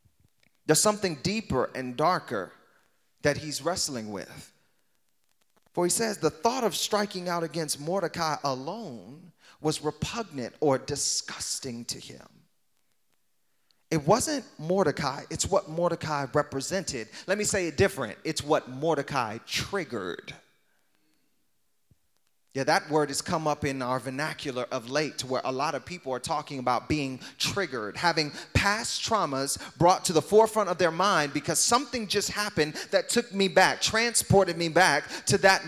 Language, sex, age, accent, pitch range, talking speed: English, male, 30-49, American, 140-195 Hz, 145 wpm